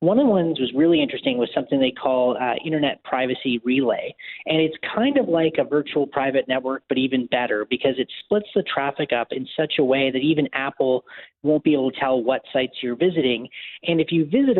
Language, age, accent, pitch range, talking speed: English, 30-49, American, 125-155 Hz, 220 wpm